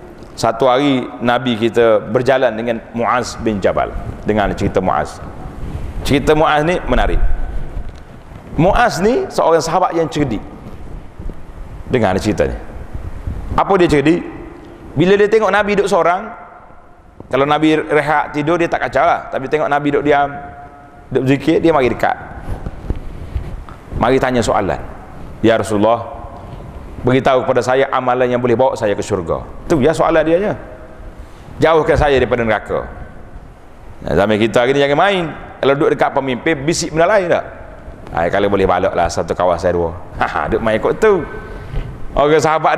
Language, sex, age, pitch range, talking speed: Malay, male, 40-59, 105-160 Hz, 150 wpm